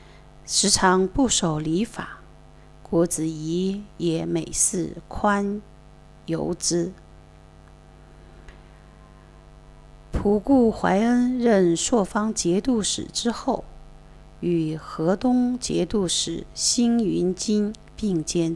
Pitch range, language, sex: 165-210 Hz, Chinese, female